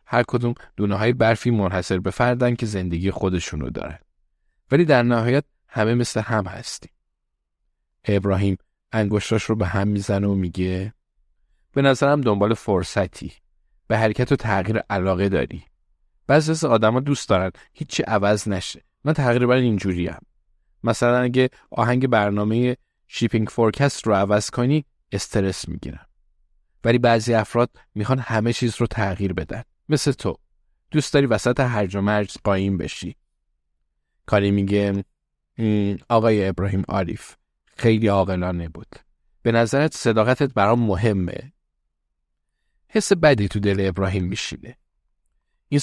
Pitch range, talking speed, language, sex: 95-120 Hz, 130 wpm, Persian, male